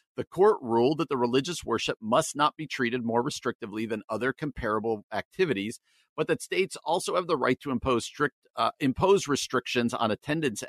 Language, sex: English, male